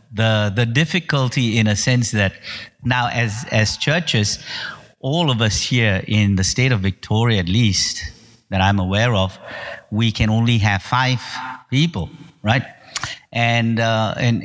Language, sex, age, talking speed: English, male, 50-69, 150 wpm